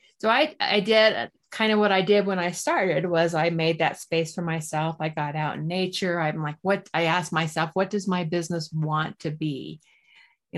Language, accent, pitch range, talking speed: English, American, 160-200 Hz, 215 wpm